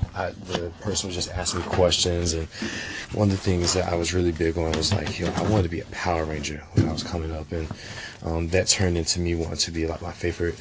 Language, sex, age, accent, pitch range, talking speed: English, male, 20-39, American, 85-95 Hz, 255 wpm